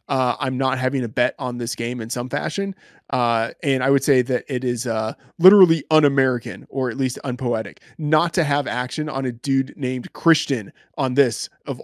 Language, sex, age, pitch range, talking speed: English, male, 20-39, 125-145 Hz, 205 wpm